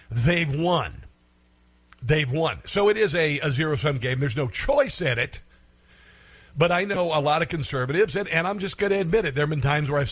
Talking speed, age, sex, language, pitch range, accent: 220 wpm, 50-69, male, English, 125-165 Hz, American